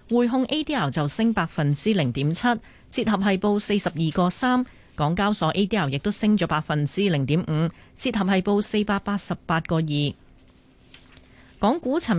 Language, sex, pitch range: Chinese, female, 155-210 Hz